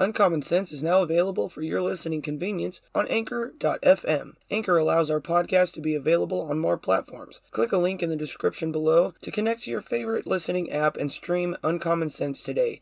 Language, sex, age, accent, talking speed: English, male, 30-49, American, 185 wpm